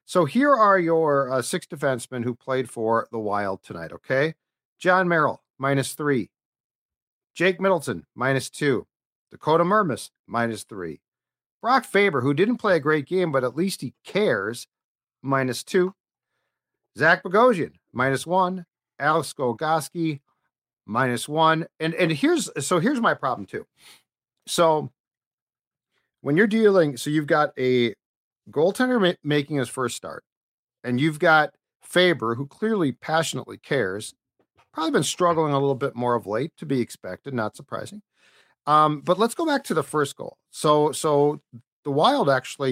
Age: 50-69